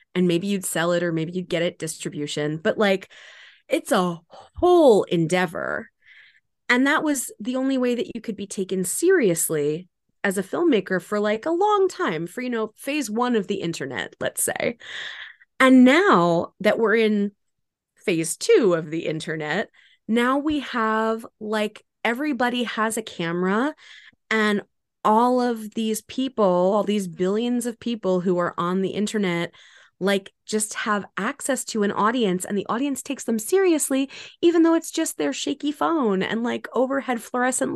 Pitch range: 185-260 Hz